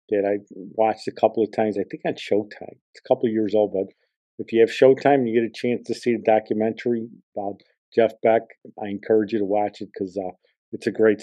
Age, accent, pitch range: 50-69, American, 105-120 Hz